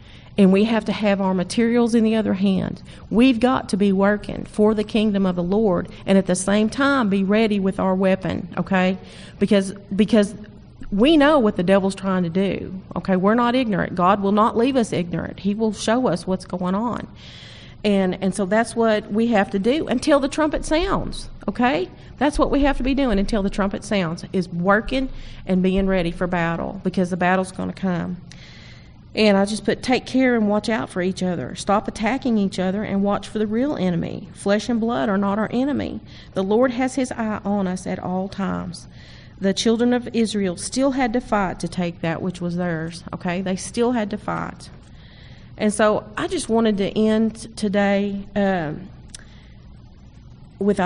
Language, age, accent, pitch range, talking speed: English, 40-59, American, 190-225 Hz, 195 wpm